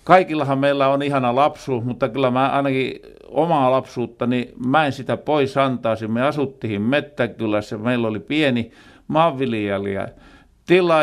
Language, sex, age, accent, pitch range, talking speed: Finnish, male, 50-69, native, 125-155 Hz, 140 wpm